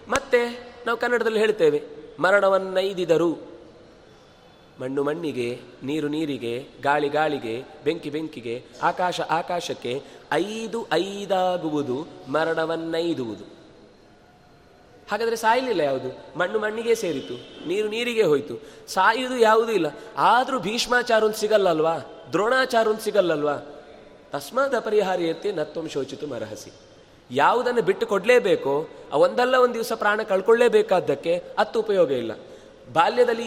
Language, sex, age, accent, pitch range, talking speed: Kannada, male, 30-49, native, 175-245 Hz, 95 wpm